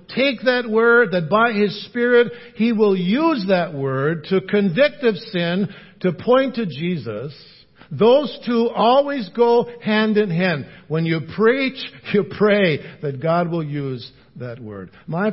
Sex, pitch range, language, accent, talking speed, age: male, 165-215 Hz, English, American, 155 wpm, 60-79